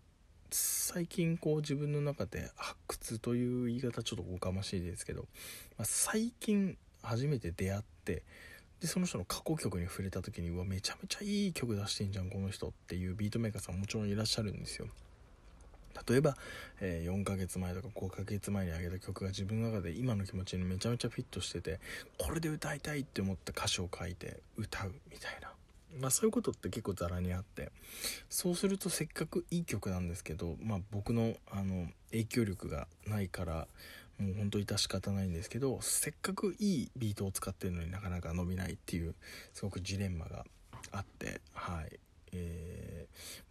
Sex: male